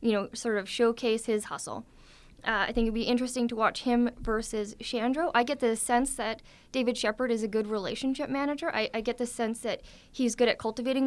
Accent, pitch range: American, 205-245 Hz